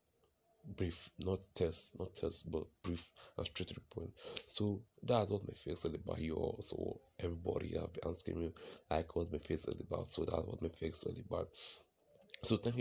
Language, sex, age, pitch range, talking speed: English, male, 30-49, 85-100 Hz, 195 wpm